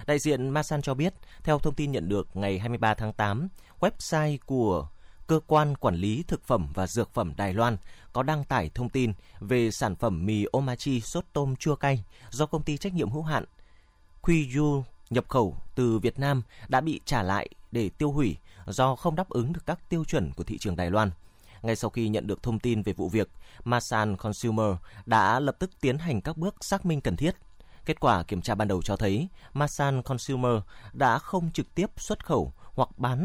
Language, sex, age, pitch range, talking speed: Vietnamese, male, 20-39, 105-145 Hz, 210 wpm